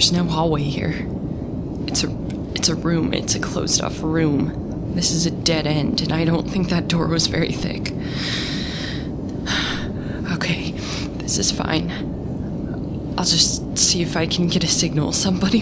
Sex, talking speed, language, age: female, 160 wpm, English, 20-39